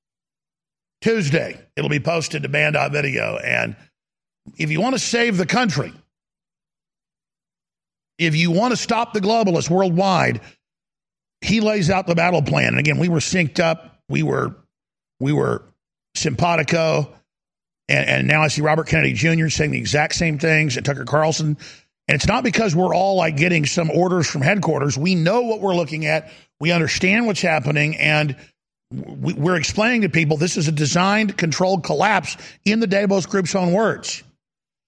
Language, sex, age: English, male, 50-69